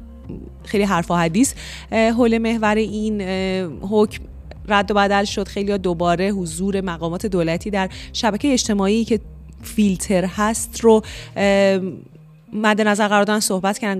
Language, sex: Persian, female